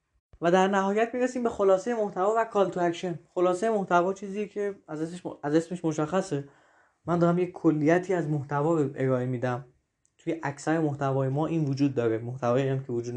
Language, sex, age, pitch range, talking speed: Persian, male, 20-39, 135-170 Hz, 190 wpm